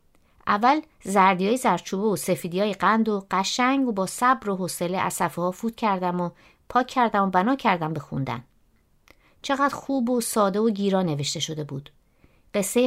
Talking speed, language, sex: 160 wpm, Persian, female